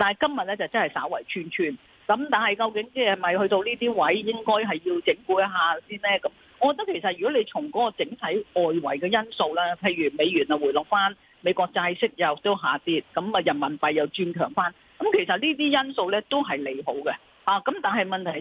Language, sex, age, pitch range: Chinese, female, 40-59, 185-285 Hz